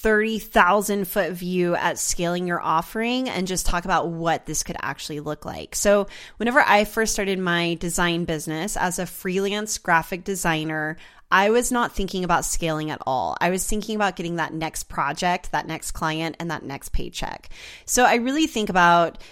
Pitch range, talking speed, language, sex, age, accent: 165-205 Hz, 180 wpm, English, female, 30-49, American